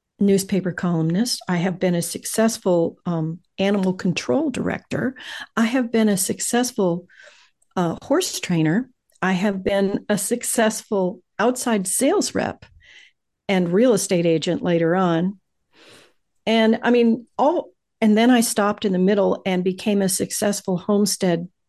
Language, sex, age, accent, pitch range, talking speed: English, female, 50-69, American, 180-220 Hz, 135 wpm